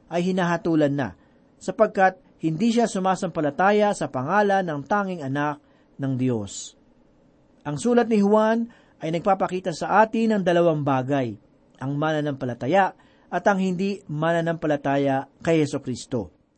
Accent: native